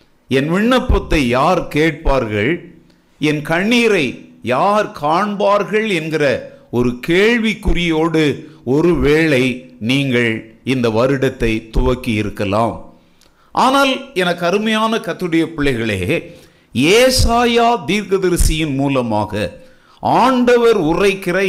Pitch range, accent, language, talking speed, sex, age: 135-210 Hz, native, Tamil, 75 wpm, male, 50-69